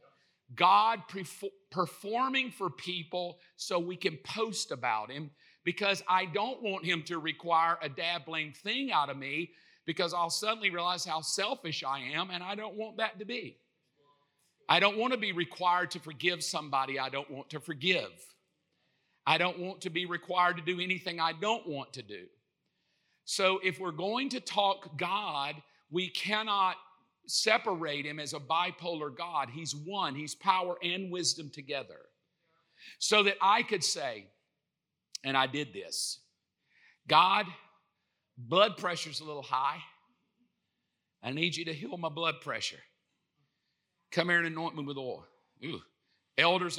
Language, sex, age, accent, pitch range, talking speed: English, male, 50-69, American, 145-185 Hz, 155 wpm